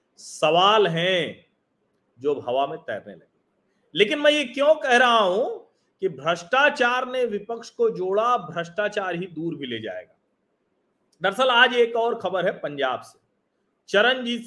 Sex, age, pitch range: male, 40-59, 170-230 Hz